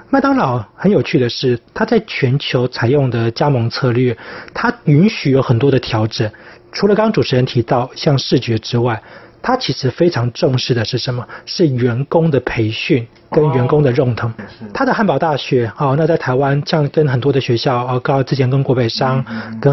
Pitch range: 120-150 Hz